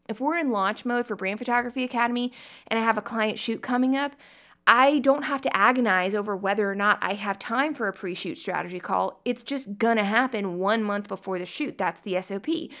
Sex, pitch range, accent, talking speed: female, 195-250 Hz, American, 220 wpm